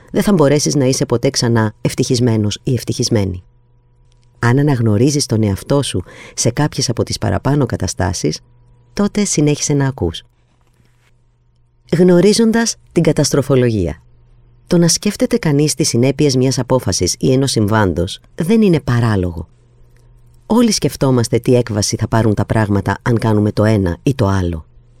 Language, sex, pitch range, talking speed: Greek, female, 115-155 Hz, 135 wpm